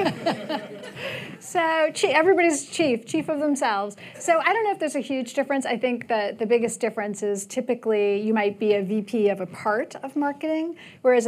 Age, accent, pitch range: 30-49, American, 205-250 Hz